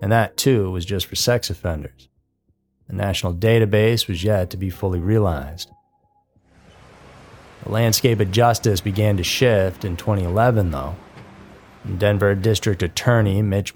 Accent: American